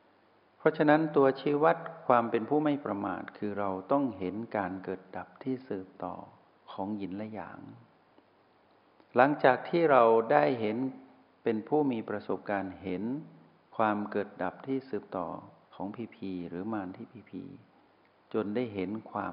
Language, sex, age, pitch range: Thai, male, 60-79, 95-125 Hz